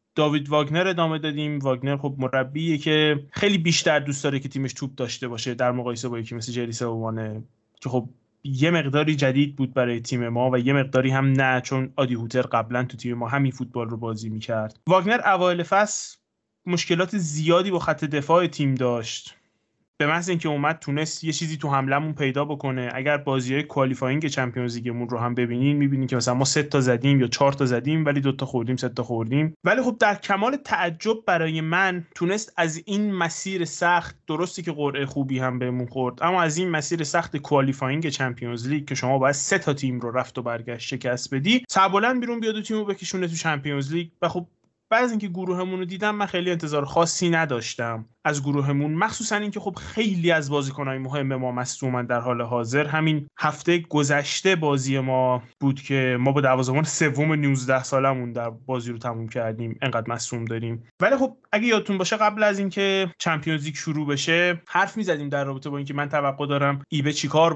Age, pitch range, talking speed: 20-39, 125-170 Hz, 190 wpm